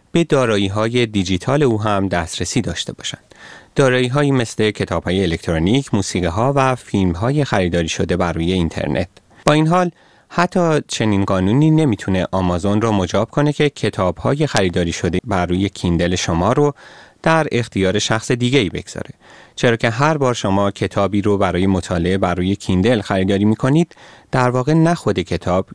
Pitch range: 90-125 Hz